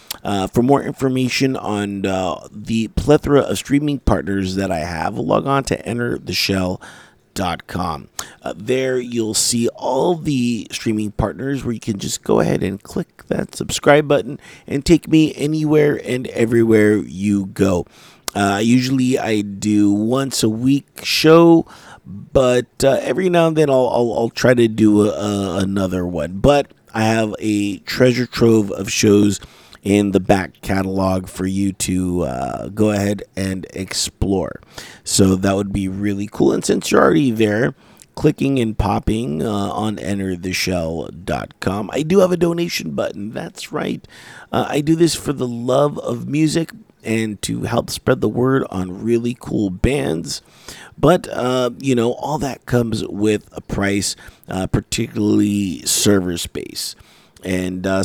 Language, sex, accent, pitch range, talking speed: English, male, American, 100-130 Hz, 150 wpm